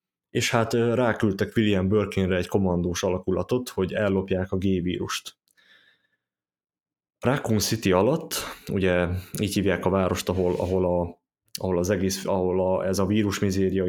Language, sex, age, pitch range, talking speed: Hungarian, male, 20-39, 95-105 Hz, 135 wpm